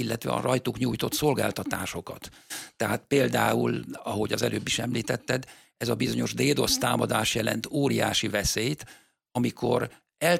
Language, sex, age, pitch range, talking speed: Hungarian, male, 50-69, 110-135 Hz, 125 wpm